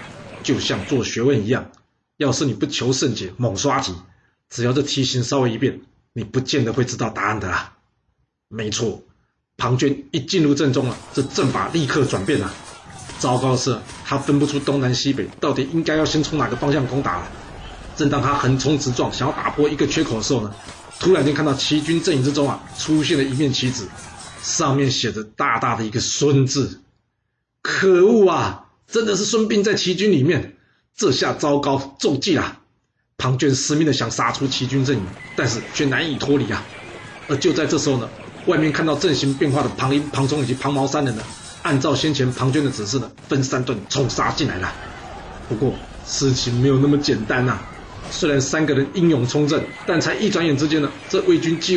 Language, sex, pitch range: Chinese, male, 120-150 Hz